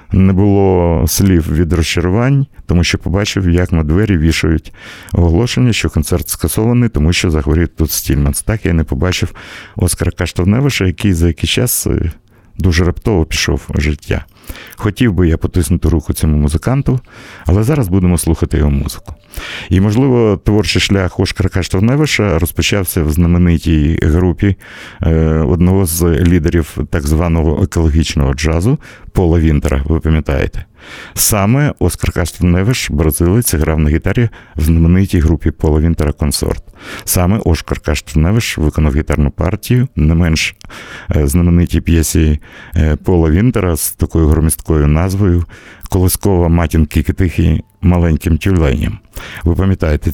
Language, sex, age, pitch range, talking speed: Russian, male, 50-69, 80-100 Hz, 125 wpm